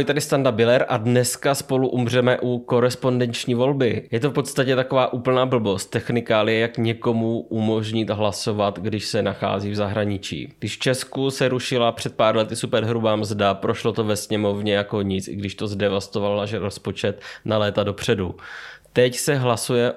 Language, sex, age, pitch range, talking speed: Czech, male, 20-39, 100-120 Hz, 175 wpm